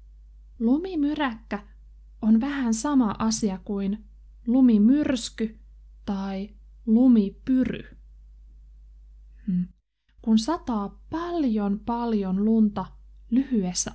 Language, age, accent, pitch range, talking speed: Finnish, 20-39, native, 185-240 Hz, 70 wpm